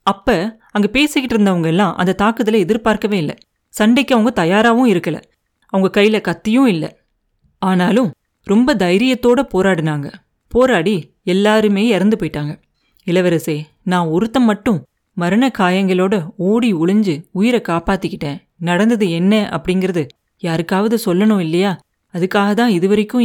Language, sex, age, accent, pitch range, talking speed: Tamil, female, 30-49, native, 165-215 Hz, 110 wpm